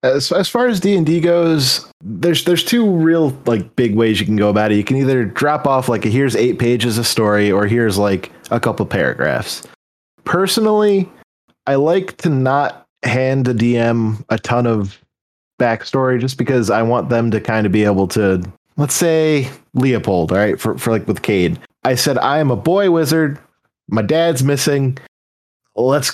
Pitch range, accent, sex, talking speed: 110-145 Hz, American, male, 180 wpm